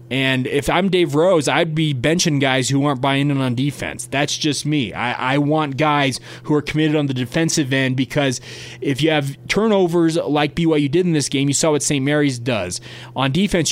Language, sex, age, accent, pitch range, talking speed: English, male, 20-39, American, 125-155 Hz, 210 wpm